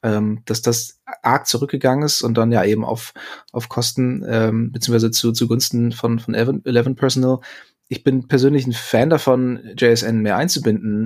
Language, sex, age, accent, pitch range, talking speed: German, male, 20-39, German, 110-125 Hz, 155 wpm